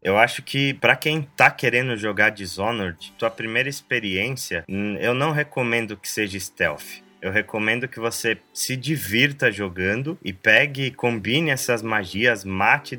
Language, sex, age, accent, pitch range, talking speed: Portuguese, male, 20-39, Brazilian, 110-140 Hz, 145 wpm